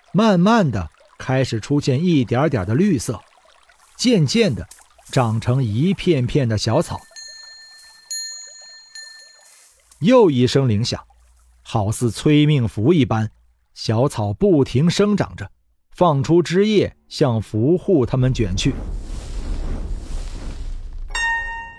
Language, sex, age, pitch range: Chinese, male, 50-69, 105-170 Hz